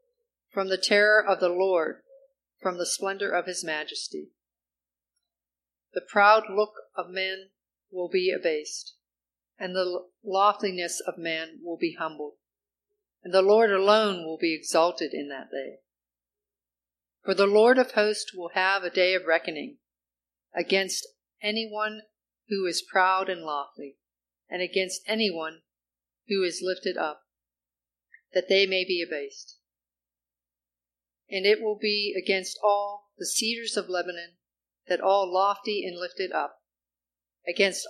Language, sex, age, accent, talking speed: English, female, 50-69, American, 135 wpm